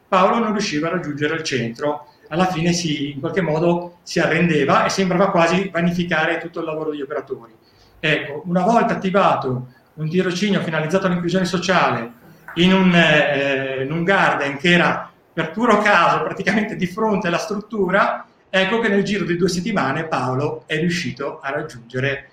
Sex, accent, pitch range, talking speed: male, native, 150-195 Hz, 165 wpm